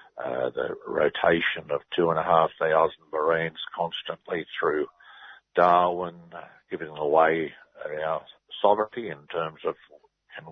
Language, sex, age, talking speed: English, male, 60-79, 125 wpm